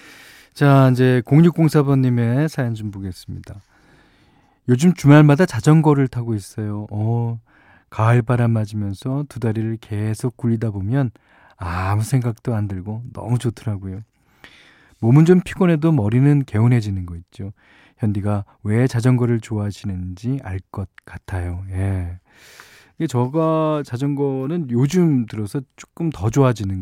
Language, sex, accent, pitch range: Korean, male, native, 105-140 Hz